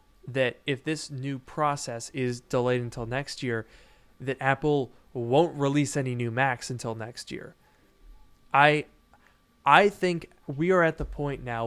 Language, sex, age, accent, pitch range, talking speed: English, male, 20-39, American, 125-150 Hz, 150 wpm